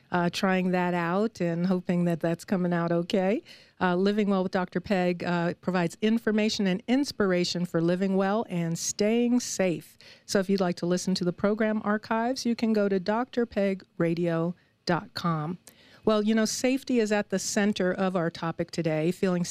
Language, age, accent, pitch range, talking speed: English, 50-69, American, 175-215 Hz, 170 wpm